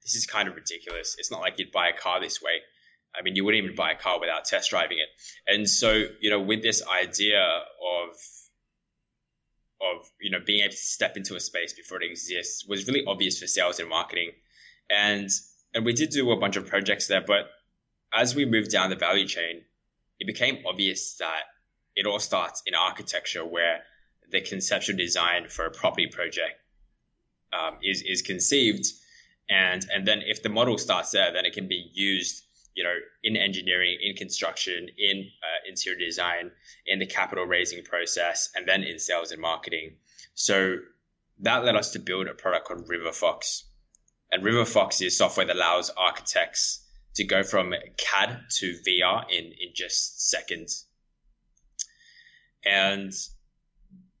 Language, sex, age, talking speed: English, male, 20-39, 170 wpm